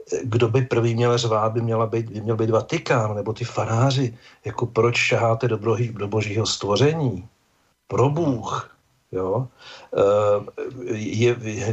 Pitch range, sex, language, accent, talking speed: 115-135 Hz, male, Czech, native, 135 wpm